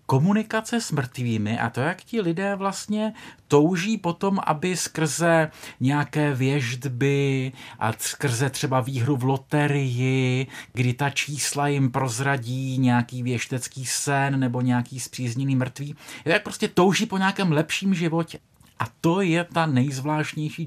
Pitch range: 125-165 Hz